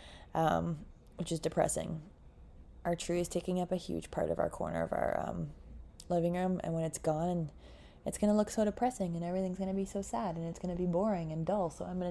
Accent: American